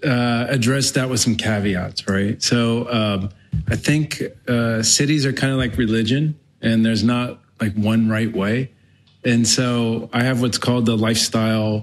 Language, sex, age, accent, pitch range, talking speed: English, male, 30-49, American, 110-125 Hz, 165 wpm